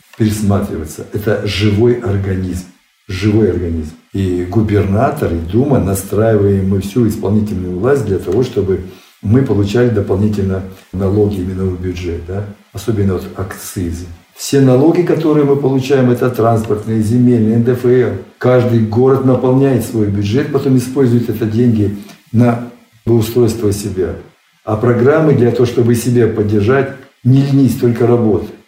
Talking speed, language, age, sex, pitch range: 130 wpm, Russian, 60-79, male, 95-120 Hz